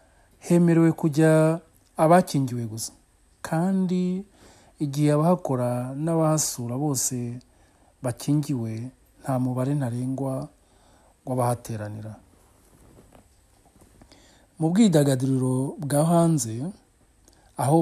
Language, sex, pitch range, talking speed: English, male, 120-160 Hz, 75 wpm